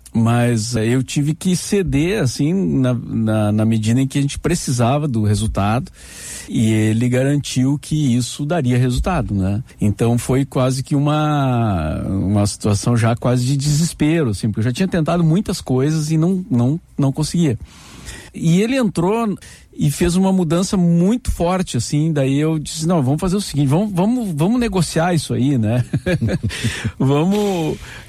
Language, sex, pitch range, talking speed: Portuguese, male, 115-170 Hz, 155 wpm